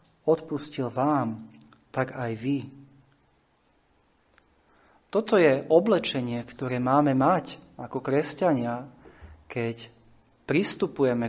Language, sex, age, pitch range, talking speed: Slovak, male, 30-49, 115-140 Hz, 80 wpm